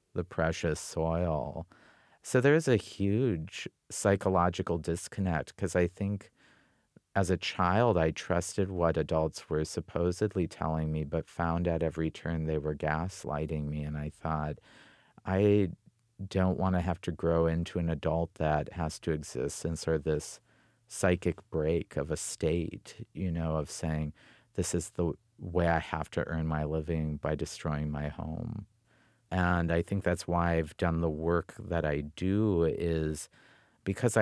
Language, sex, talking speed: English, male, 160 wpm